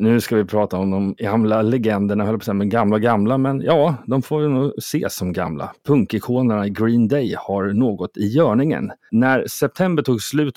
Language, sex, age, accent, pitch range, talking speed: Swedish, male, 30-49, native, 100-130 Hz, 180 wpm